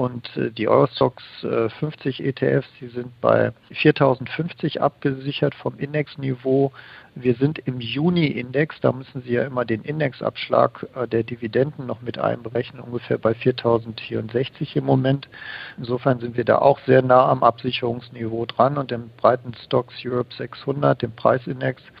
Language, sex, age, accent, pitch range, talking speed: German, male, 50-69, German, 120-140 Hz, 140 wpm